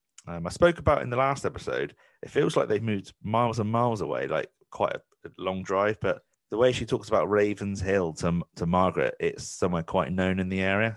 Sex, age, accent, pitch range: male, 30-49, British, 90-115 Hz